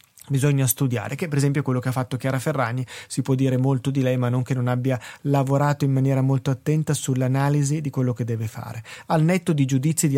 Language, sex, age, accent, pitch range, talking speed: Italian, male, 30-49, native, 135-155 Hz, 225 wpm